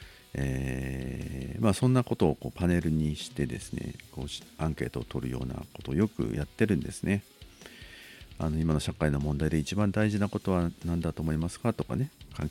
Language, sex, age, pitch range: Japanese, male, 50-69, 70-90 Hz